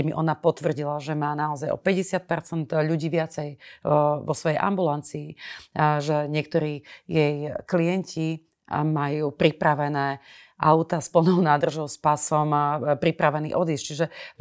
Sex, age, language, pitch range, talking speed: female, 30-49, Slovak, 150-170 Hz, 130 wpm